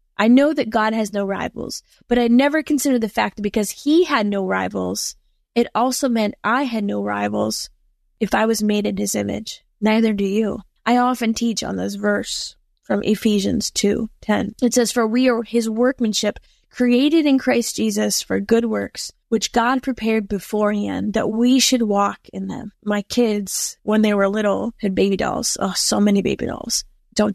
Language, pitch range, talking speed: English, 195-230 Hz, 185 wpm